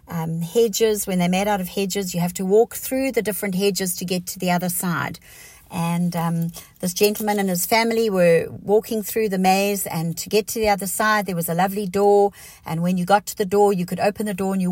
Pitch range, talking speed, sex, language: 180-225 Hz, 245 wpm, female, English